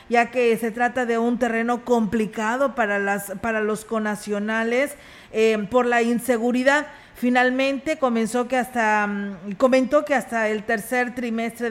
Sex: female